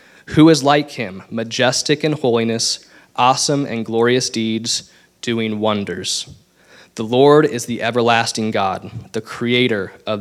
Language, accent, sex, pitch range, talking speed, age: English, American, male, 110-130 Hz, 130 wpm, 20-39